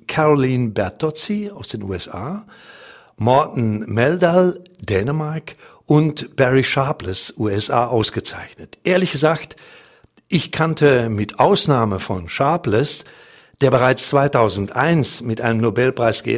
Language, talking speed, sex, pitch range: German, 100 wpm, male, 110-150 Hz